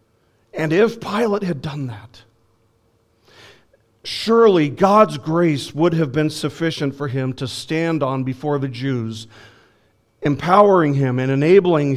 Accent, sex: American, male